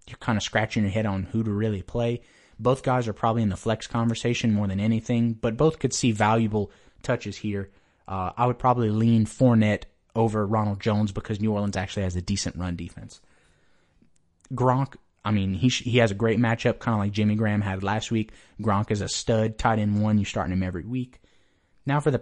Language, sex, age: English, male, 30-49